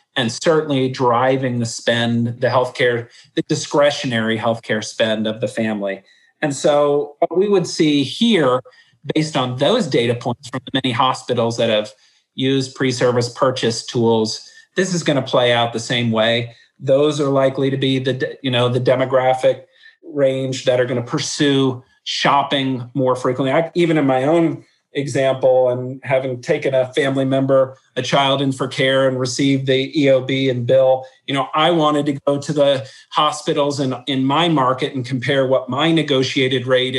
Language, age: English, 40-59